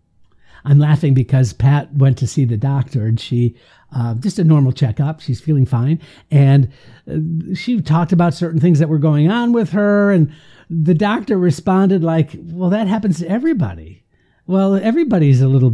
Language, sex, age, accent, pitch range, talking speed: English, male, 60-79, American, 135-215 Hz, 170 wpm